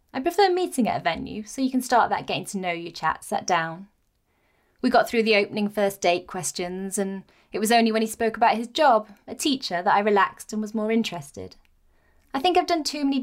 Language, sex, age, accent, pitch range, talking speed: English, female, 20-39, British, 195-260 Hz, 230 wpm